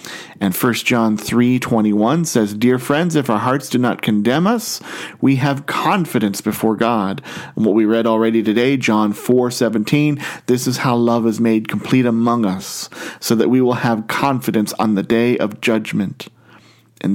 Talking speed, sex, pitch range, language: 170 wpm, male, 110-130 Hz, English